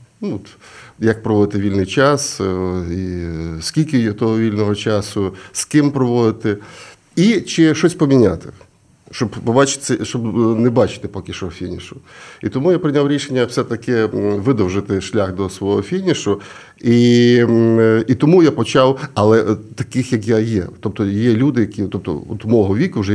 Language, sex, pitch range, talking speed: Ukrainian, male, 100-125 Hz, 140 wpm